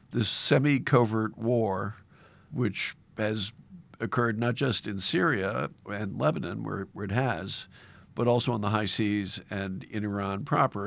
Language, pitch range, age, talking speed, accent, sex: English, 105-130 Hz, 50-69, 145 wpm, American, male